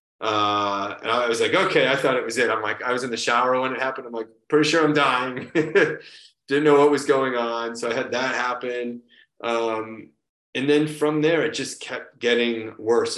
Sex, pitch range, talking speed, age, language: male, 115-145 Hz, 220 wpm, 30-49, English